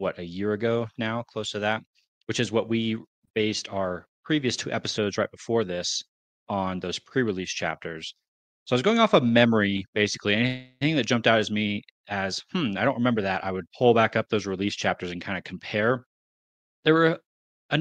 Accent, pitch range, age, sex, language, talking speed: American, 95-115 Hz, 30-49, male, English, 200 wpm